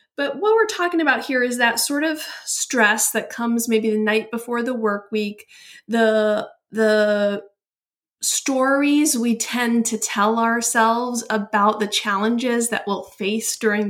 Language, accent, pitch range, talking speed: English, American, 210-250 Hz, 150 wpm